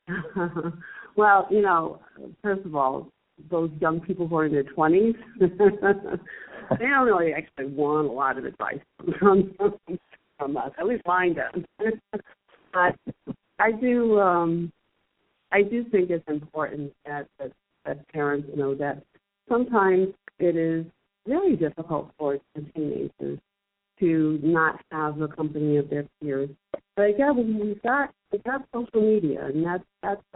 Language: English